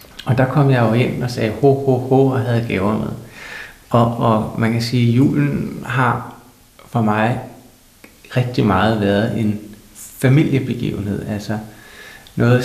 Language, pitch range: Danish, 110-130 Hz